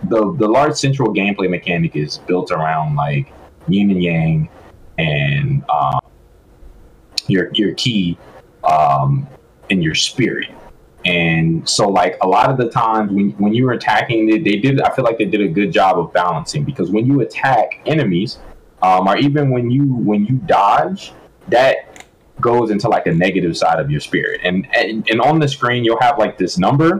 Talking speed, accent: 180 wpm, American